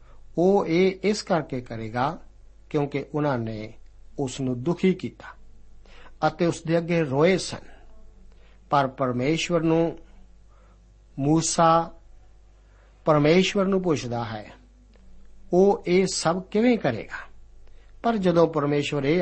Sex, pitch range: male, 125-165 Hz